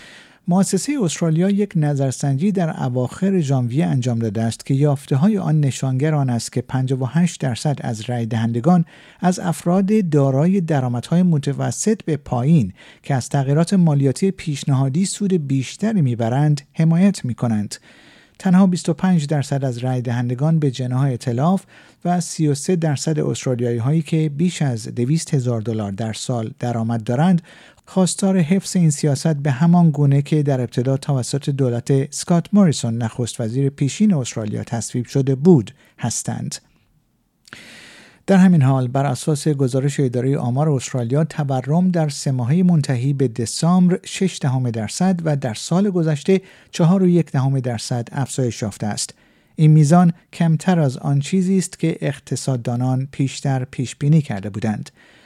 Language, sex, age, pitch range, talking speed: Persian, male, 50-69, 130-170 Hz, 140 wpm